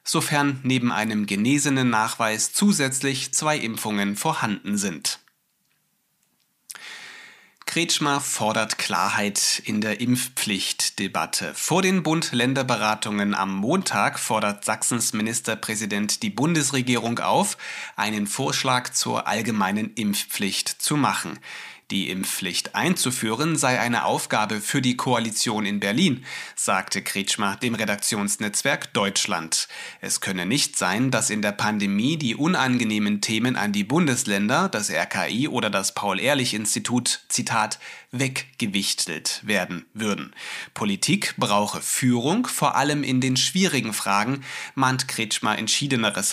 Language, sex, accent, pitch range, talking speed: German, male, German, 105-140 Hz, 110 wpm